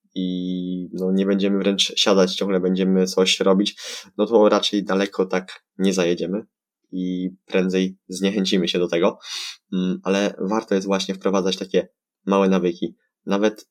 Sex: male